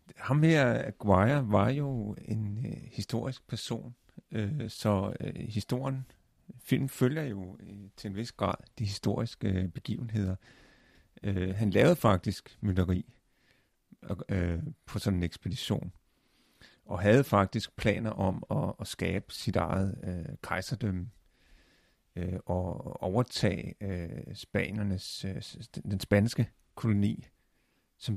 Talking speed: 120 wpm